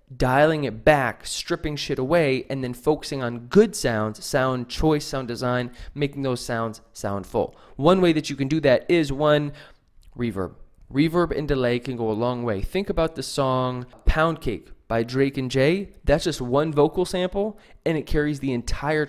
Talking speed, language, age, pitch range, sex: 185 wpm, English, 20-39, 125-155 Hz, male